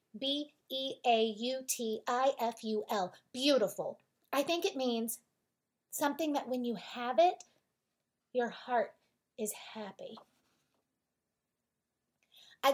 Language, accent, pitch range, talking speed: English, American, 225-305 Hz, 80 wpm